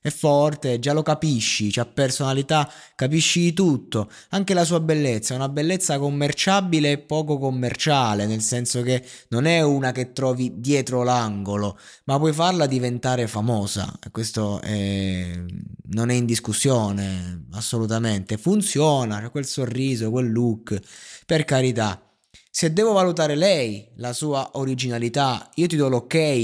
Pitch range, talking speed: 110-140 Hz, 140 wpm